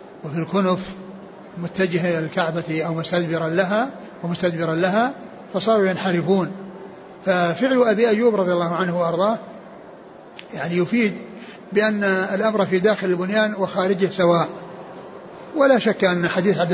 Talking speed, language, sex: 120 wpm, Arabic, male